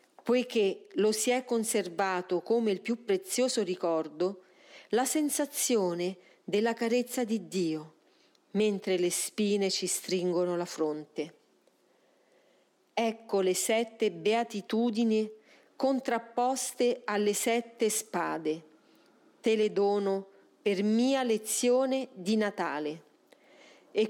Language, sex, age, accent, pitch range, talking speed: Italian, female, 40-59, native, 185-245 Hz, 100 wpm